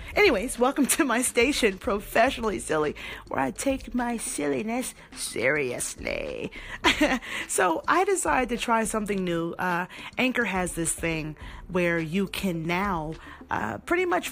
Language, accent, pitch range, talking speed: English, American, 185-265 Hz, 135 wpm